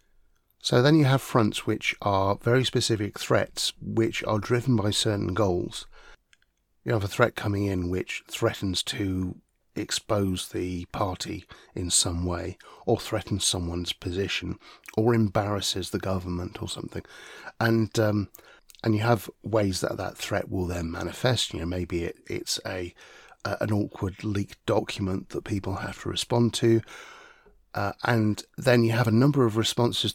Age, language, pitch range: 30-49, English, 95-115 Hz